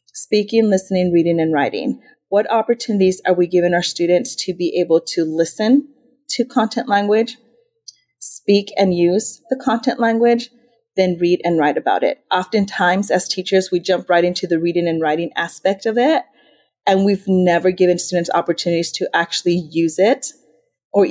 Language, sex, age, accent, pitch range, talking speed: English, female, 30-49, American, 170-215 Hz, 160 wpm